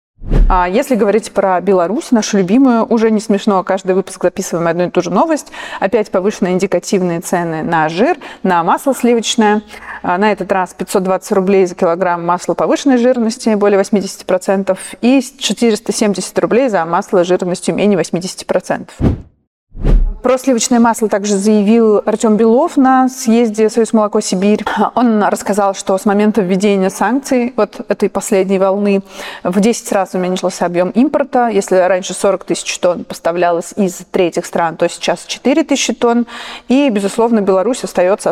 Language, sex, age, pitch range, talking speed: Russian, female, 30-49, 185-230 Hz, 145 wpm